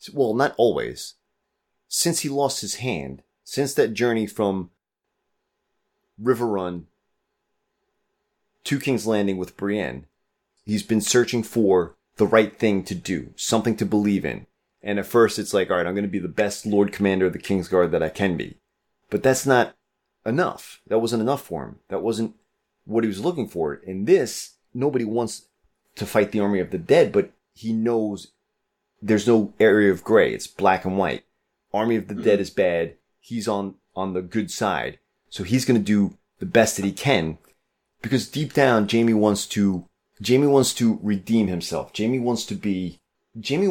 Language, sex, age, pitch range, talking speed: English, male, 30-49, 100-120 Hz, 180 wpm